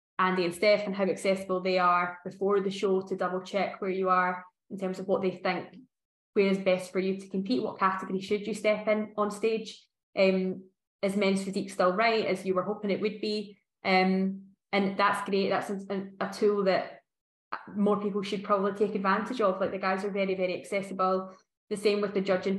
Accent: British